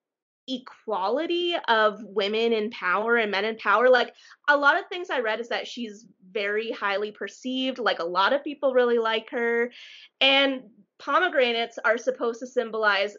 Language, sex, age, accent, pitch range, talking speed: English, female, 20-39, American, 220-320 Hz, 165 wpm